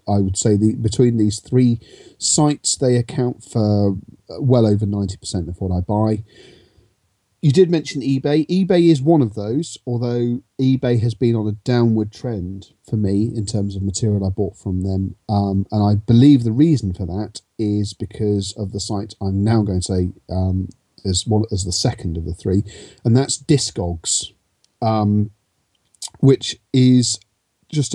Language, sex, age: English, male, 40-59